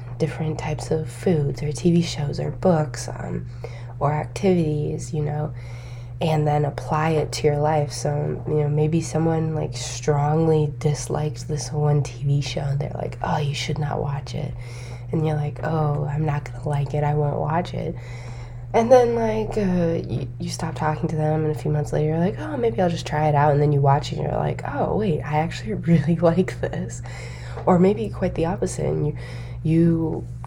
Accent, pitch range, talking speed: American, 125-160 Hz, 200 wpm